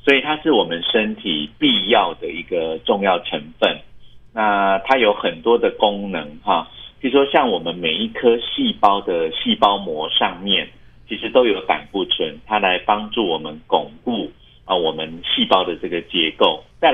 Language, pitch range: Chinese, 90-125 Hz